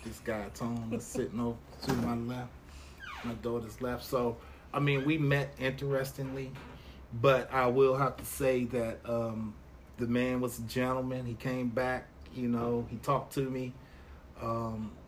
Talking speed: 165 wpm